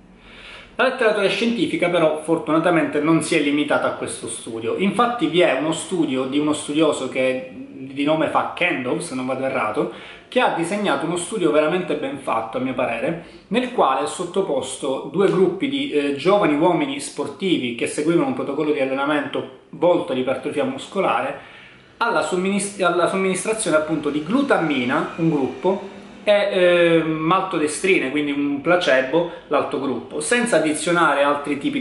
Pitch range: 145-195 Hz